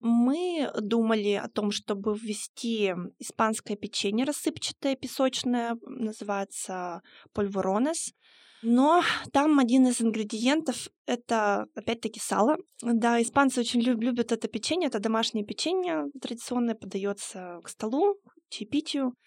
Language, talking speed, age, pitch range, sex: Russian, 105 wpm, 20-39, 205-250 Hz, female